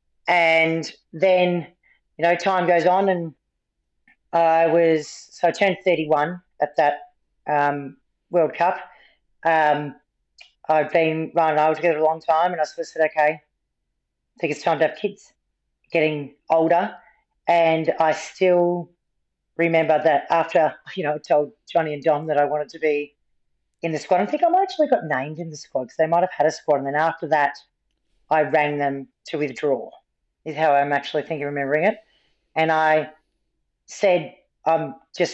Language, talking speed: English, 175 wpm